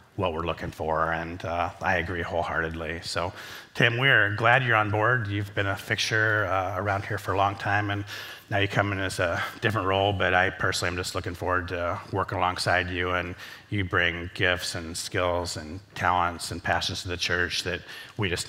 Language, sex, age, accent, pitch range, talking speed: English, male, 30-49, American, 90-105 Hz, 210 wpm